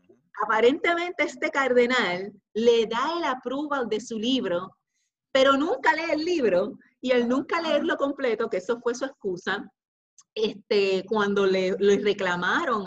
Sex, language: female, Spanish